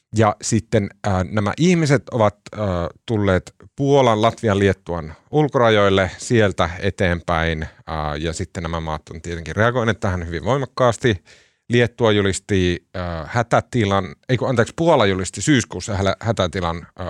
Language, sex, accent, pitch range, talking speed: Finnish, male, native, 90-120 Hz, 105 wpm